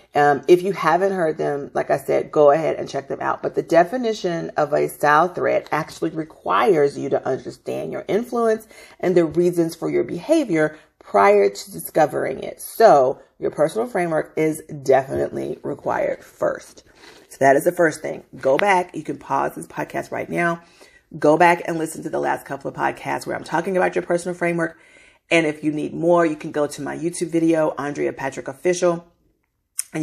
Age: 40-59